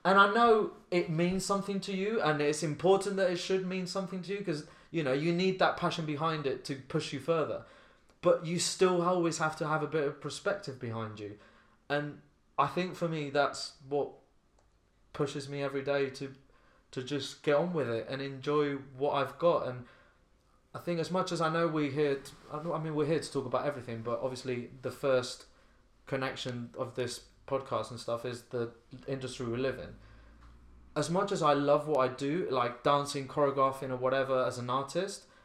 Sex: male